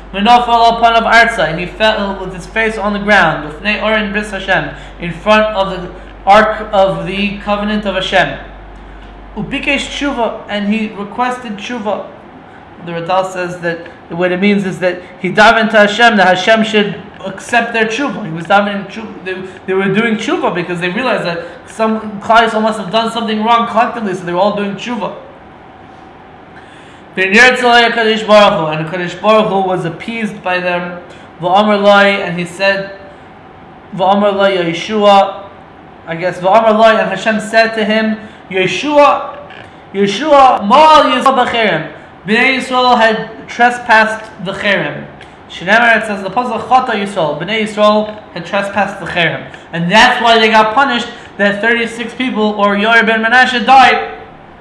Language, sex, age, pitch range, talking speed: English, male, 20-39, 190-230 Hz, 145 wpm